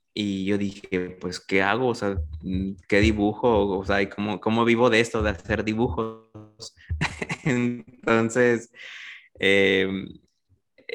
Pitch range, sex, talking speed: 100-120 Hz, male, 120 wpm